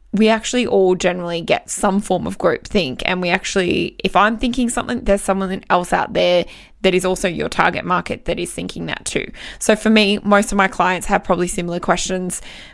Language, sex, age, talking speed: English, female, 20-39, 205 wpm